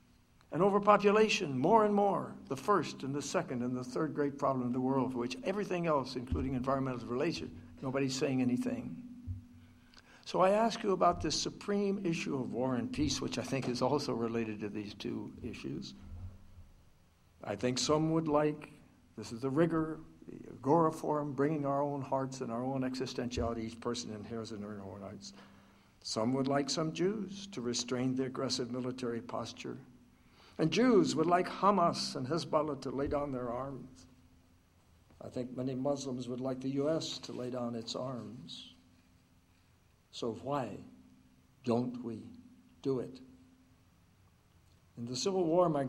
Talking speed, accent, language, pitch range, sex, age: 160 wpm, American, English, 115-145 Hz, male, 60-79